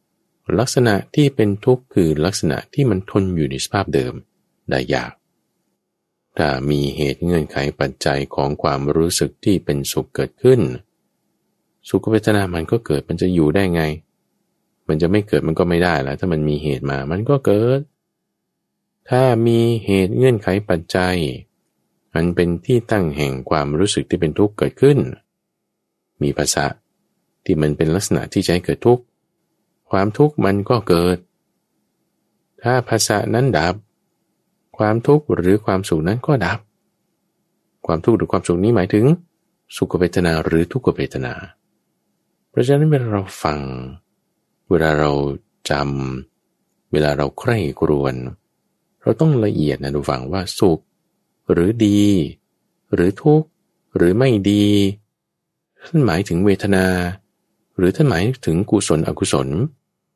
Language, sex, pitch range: English, male, 75-115 Hz